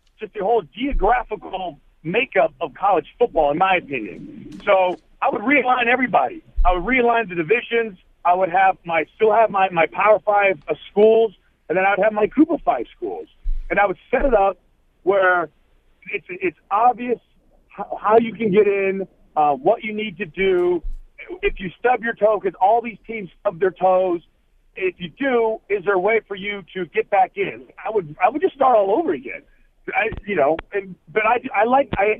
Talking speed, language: 195 wpm, English